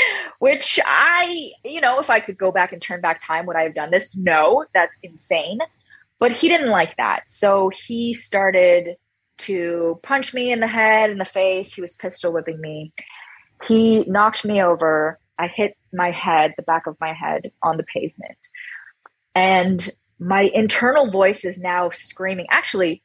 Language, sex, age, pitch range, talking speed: English, female, 20-39, 175-230 Hz, 175 wpm